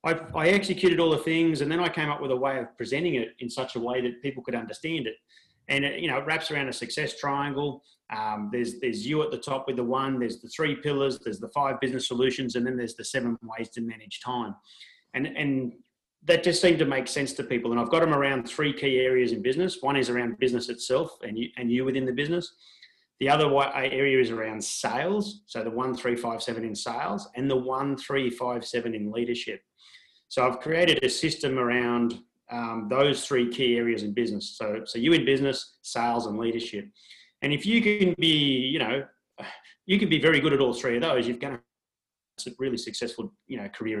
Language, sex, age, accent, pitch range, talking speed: English, male, 30-49, Australian, 120-145 Hz, 225 wpm